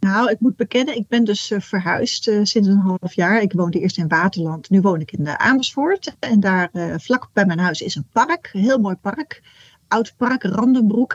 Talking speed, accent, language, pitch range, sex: 215 wpm, Dutch, Dutch, 180-230 Hz, female